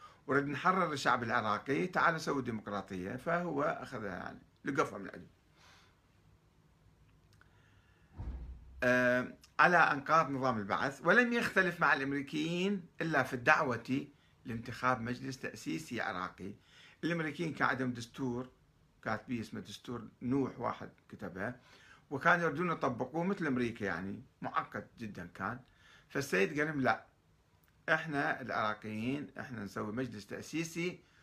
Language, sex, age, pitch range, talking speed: Arabic, male, 60-79, 110-165 Hz, 105 wpm